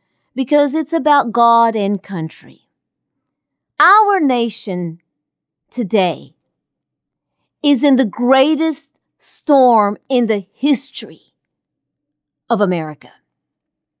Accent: American